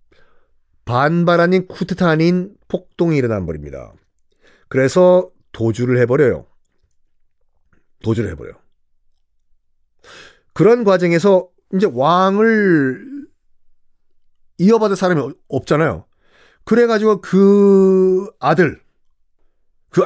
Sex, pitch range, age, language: male, 125-185 Hz, 40-59, Korean